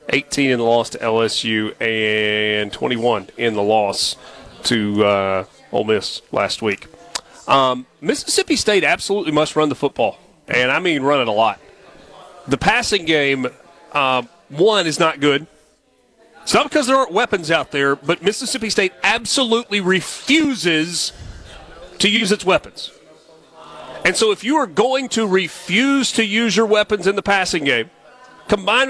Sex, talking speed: male, 155 wpm